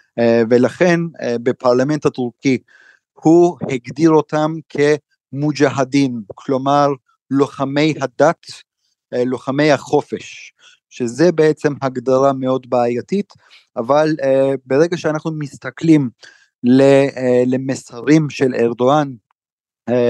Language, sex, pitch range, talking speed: Hebrew, male, 125-150 Hz, 95 wpm